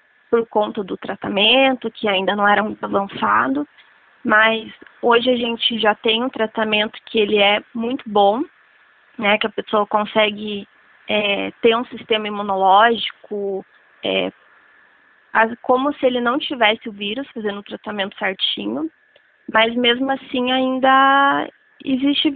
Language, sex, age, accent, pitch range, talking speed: Portuguese, female, 20-39, Brazilian, 215-280 Hz, 135 wpm